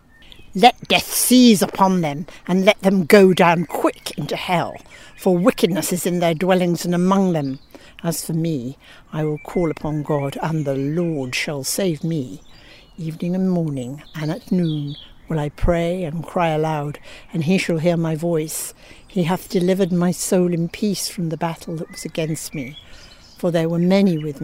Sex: female